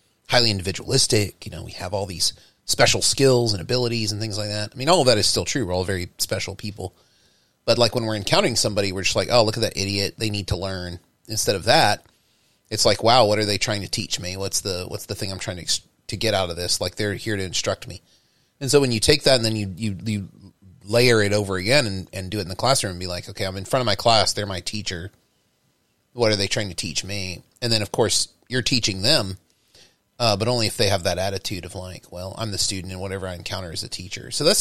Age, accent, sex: 30-49, American, male